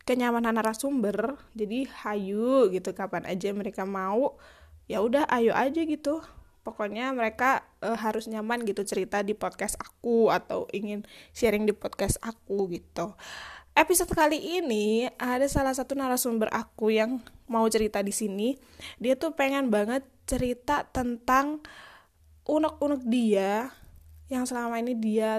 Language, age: Indonesian, 10-29